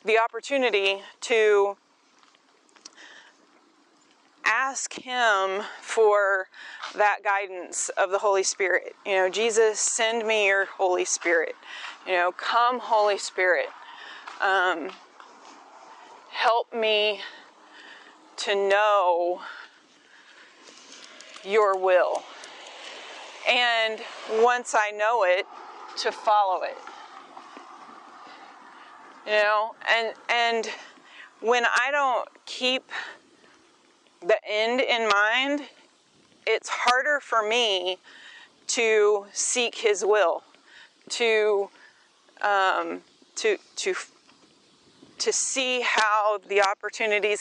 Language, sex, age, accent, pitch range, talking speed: English, female, 30-49, American, 200-295 Hz, 85 wpm